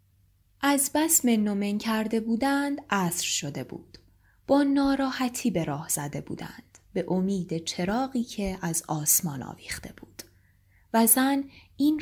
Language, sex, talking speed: Persian, female, 125 wpm